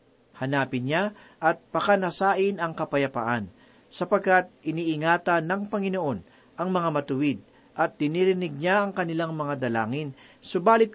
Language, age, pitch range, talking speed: Filipino, 40-59, 135-185 Hz, 115 wpm